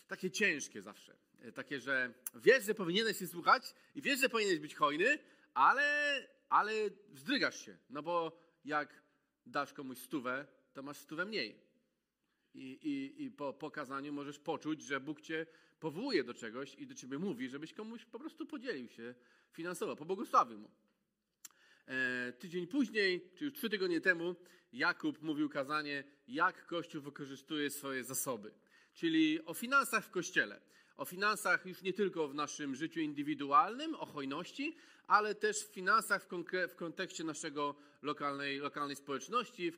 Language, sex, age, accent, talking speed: Polish, male, 40-59, native, 150 wpm